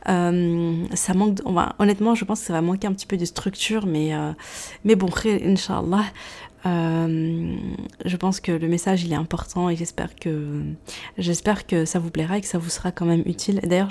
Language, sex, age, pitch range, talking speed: French, female, 20-39, 175-215 Hz, 200 wpm